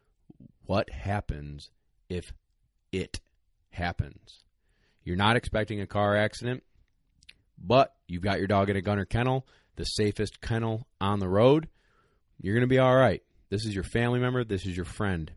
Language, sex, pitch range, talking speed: English, male, 90-110 Hz, 155 wpm